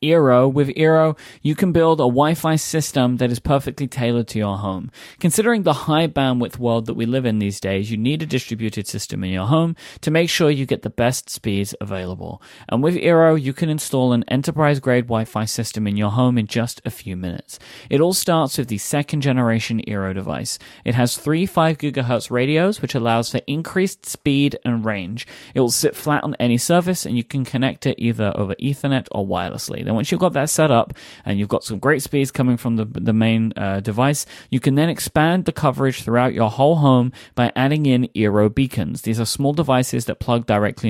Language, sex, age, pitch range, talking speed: English, male, 30-49, 115-150 Hz, 205 wpm